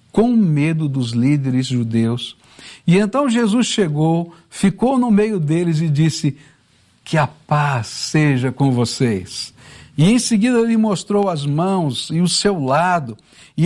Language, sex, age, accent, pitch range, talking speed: Portuguese, male, 60-79, Brazilian, 135-200 Hz, 145 wpm